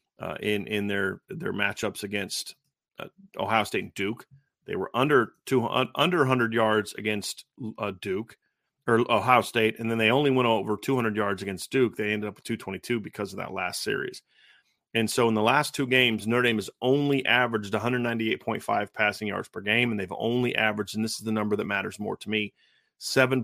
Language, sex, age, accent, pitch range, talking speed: English, male, 30-49, American, 105-125 Hz, 220 wpm